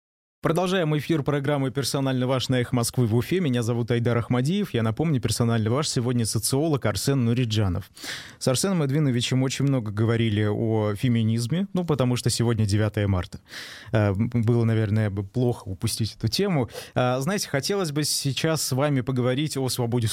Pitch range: 115-145 Hz